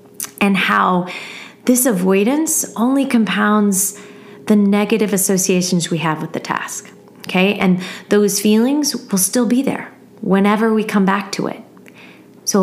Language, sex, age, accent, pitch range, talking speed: English, female, 30-49, American, 185-225 Hz, 140 wpm